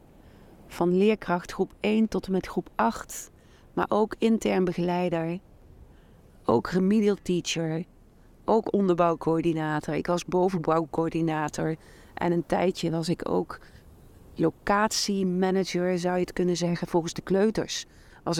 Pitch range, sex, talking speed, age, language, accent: 170-200 Hz, female, 120 wpm, 40-59, Dutch, Dutch